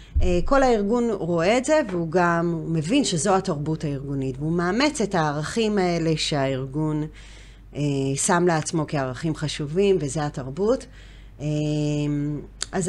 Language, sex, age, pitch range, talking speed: Hebrew, female, 30-49, 150-195 Hz, 110 wpm